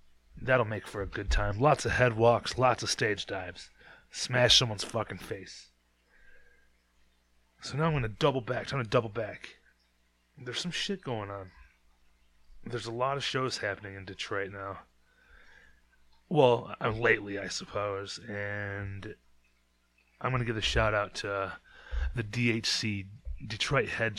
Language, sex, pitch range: English, male, 100-120 Hz